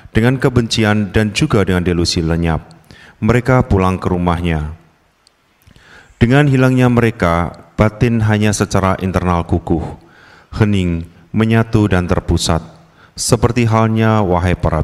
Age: 30-49